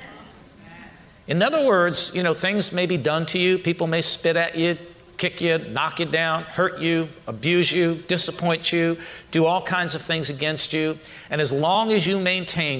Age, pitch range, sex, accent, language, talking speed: 50-69, 150-180 Hz, male, American, English, 190 wpm